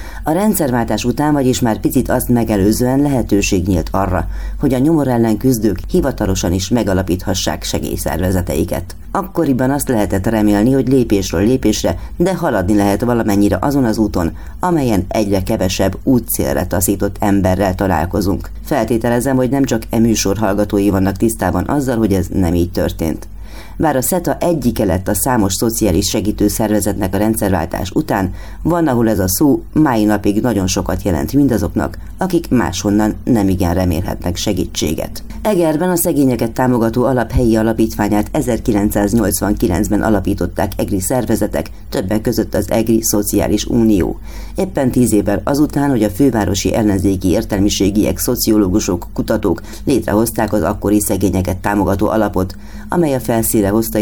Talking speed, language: 135 wpm, Hungarian